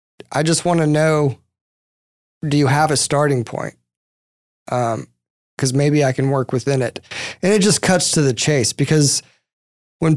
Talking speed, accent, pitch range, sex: 165 wpm, American, 120-145 Hz, male